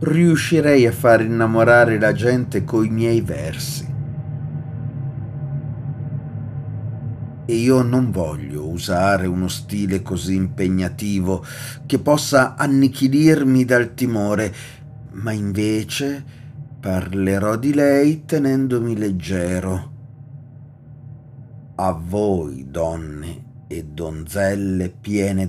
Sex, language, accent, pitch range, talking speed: male, Italian, native, 100-140 Hz, 85 wpm